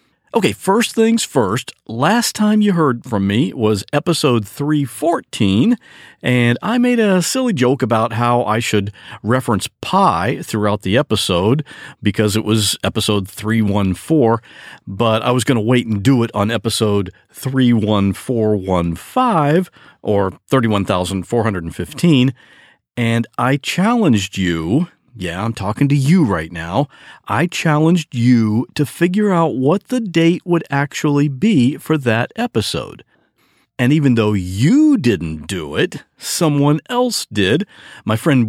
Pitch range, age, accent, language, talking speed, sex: 110-175 Hz, 50-69, American, English, 135 wpm, male